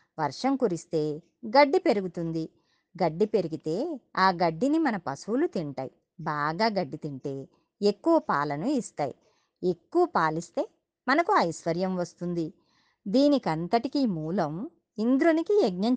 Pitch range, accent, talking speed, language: 165-255 Hz, native, 100 wpm, Telugu